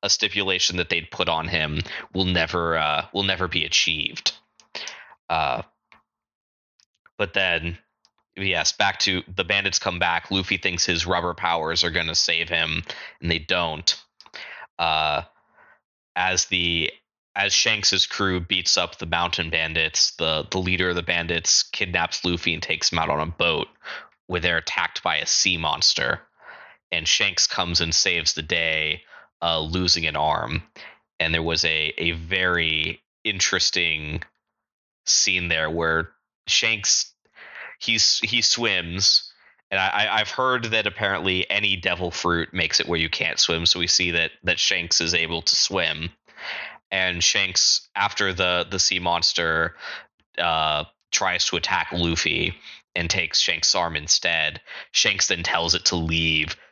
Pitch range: 80-90 Hz